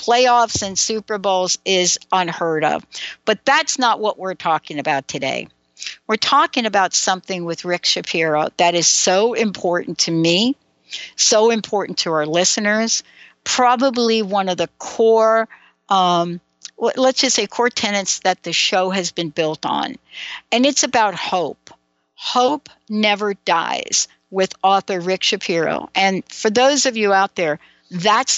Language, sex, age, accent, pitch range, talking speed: English, female, 60-79, American, 180-220 Hz, 150 wpm